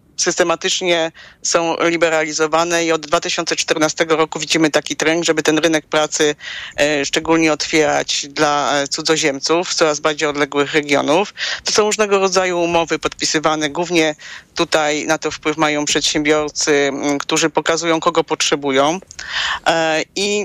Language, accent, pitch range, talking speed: Polish, native, 150-170 Hz, 115 wpm